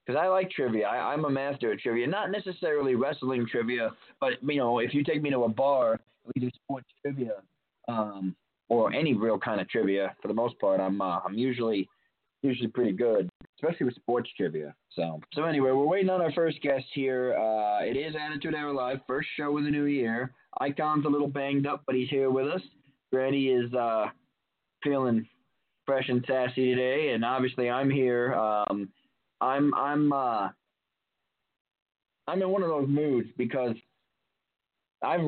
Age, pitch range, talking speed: 20-39, 120-145 Hz, 180 wpm